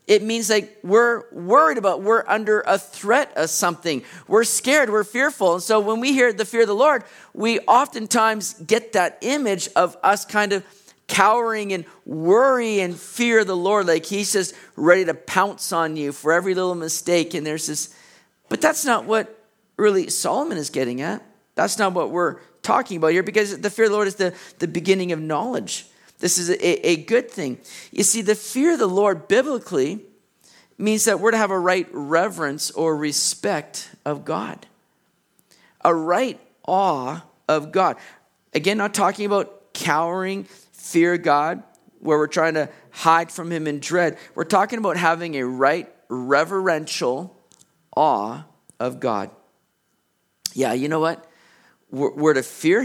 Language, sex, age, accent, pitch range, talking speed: English, male, 40-59, American, 165-215 Hz, 170 wpm